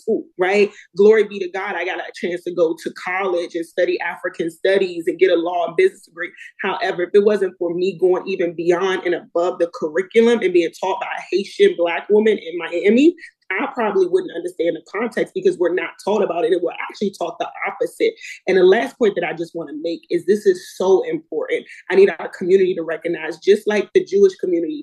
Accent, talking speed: American, 220 wpm